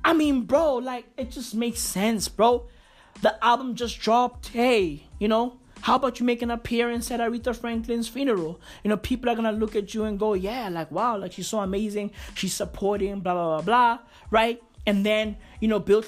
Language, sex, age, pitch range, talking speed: English, male, 20-39, 180-245 Hz, 205 wpm